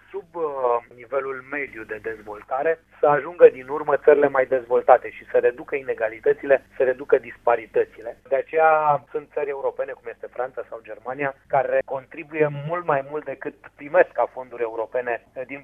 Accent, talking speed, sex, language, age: native, 155 wpm, male, Romanian, 30-49